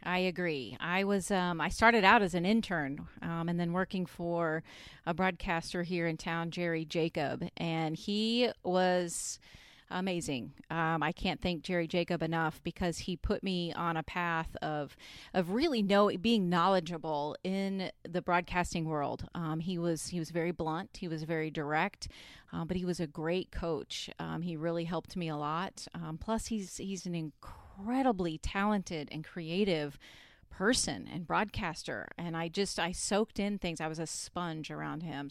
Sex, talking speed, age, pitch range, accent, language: female, 175 wpm, 30-49, 165-205 Hz, American, English